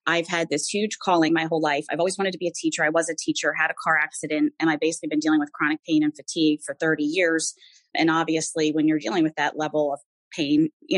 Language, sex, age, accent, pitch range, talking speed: English, female, 30-49, American, 155-185 Hz, 255 wpm